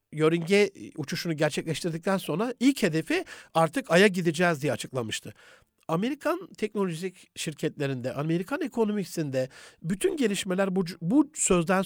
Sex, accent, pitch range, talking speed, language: male, native, 155-205 Hz, 105 wpm, Turkish